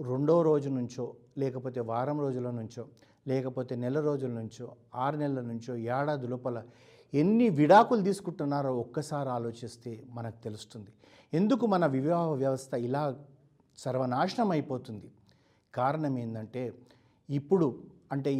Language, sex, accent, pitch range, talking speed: Telugu, male, native, 125-155 Hz, 110 wpm